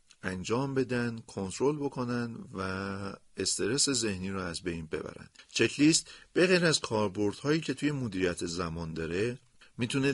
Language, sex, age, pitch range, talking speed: Persian, male, 50-69, 100-135 Hz, 130 wpm